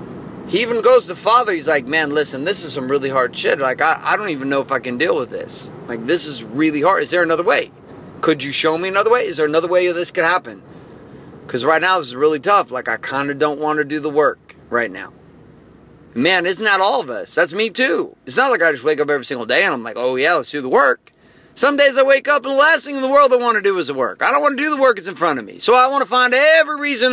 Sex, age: male, 30-49